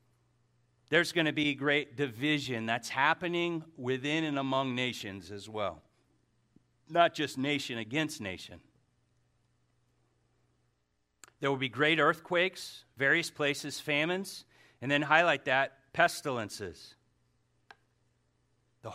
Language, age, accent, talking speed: English, 40-59, American, 105 wpm